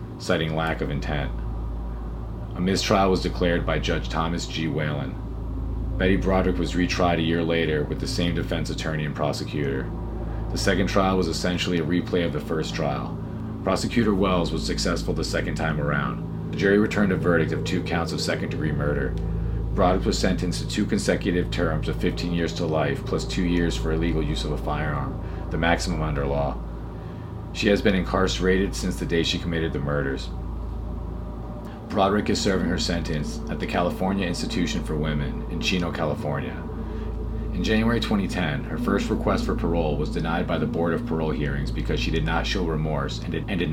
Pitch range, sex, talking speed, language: 80-95 Hz, male, 180 wpm, English